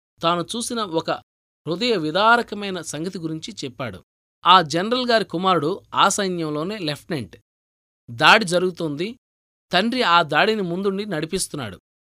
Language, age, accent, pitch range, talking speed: Telugu, 20-39, native, 150-200 Hz, 110 wpm